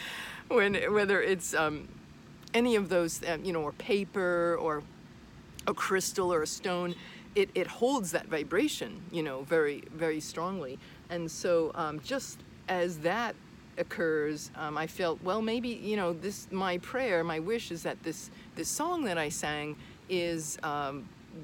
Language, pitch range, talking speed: English, 160-200 Hz, 160 wpm